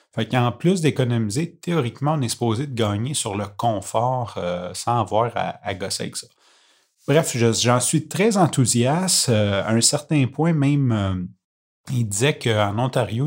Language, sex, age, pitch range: French, male, 30-49, 105-130 Hz